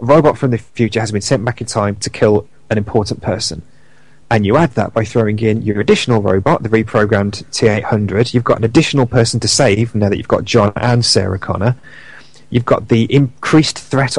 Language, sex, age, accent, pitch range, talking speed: English, male, 30-49, British, 110-130 Hz, 205 wpm